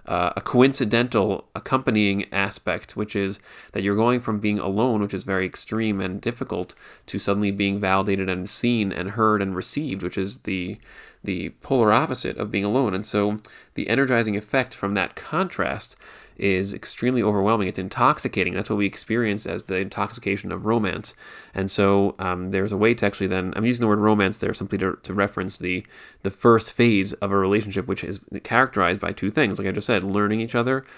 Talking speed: 190 wpm